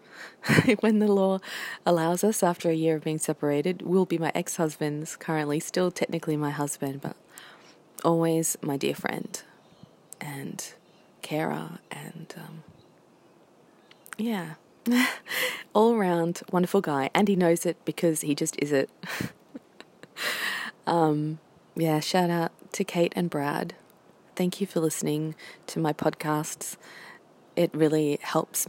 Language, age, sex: English, 20-39, female